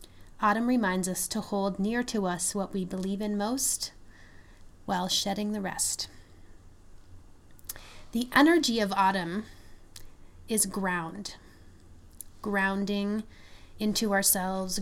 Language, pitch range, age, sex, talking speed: English, 145-215 Hz, 30-49, female, 105 wpm